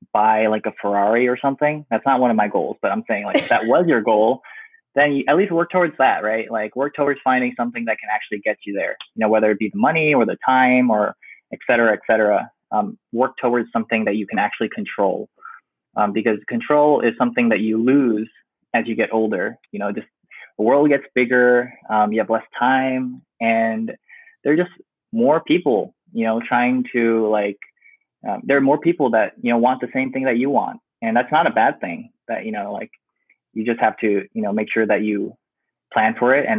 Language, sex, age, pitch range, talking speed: English, male, 20-39, 110-130 Hz, 225 wpm